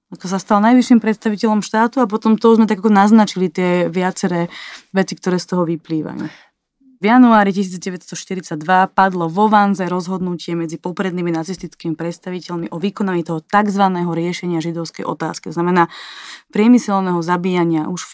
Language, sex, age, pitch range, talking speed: Slovak, female, 20-39, 170-210 Hz, 145 wpm